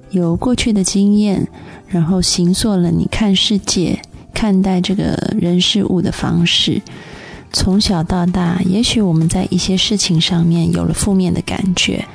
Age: 20-39